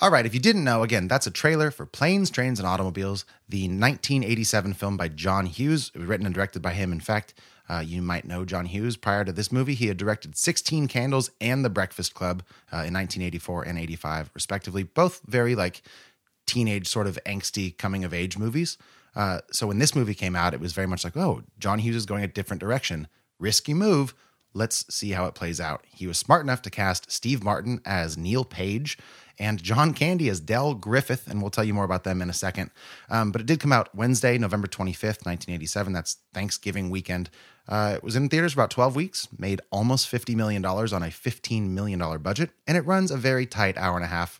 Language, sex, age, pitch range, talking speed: English, male, 30-49, 90-125 Hz, 215 wpm